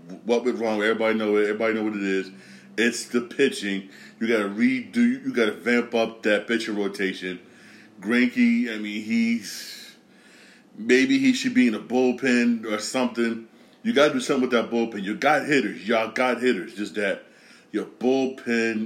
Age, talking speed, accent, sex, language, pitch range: 30-49, 170 wpm, American, male, English, 110-140 Hz